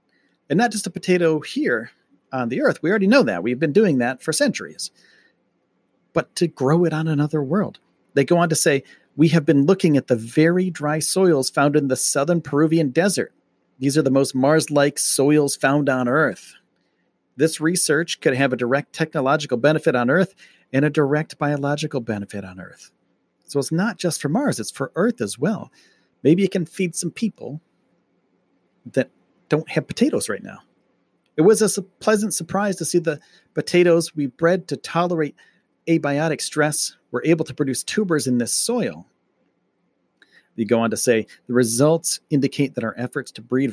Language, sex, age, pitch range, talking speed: English, male, 40-59, 135-170 Hz, 180 wpm